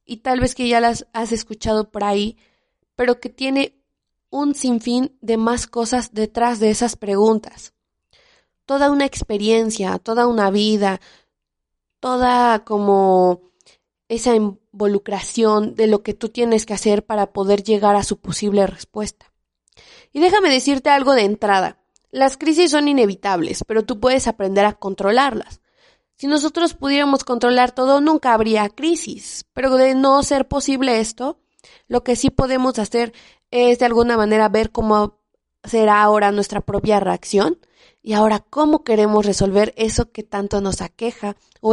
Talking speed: 150 wpm